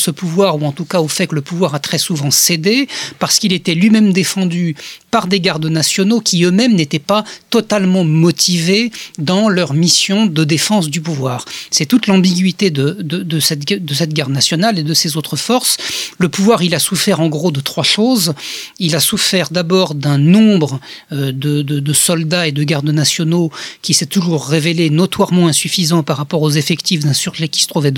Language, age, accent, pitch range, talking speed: French, 40-59, French, 155-185 Hz, 195 wpm